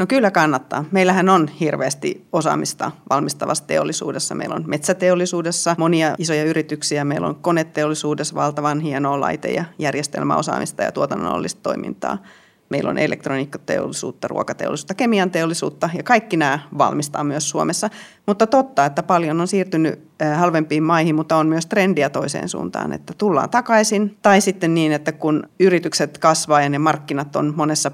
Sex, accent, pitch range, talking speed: female, native, 150-195 Hz, 140 wpm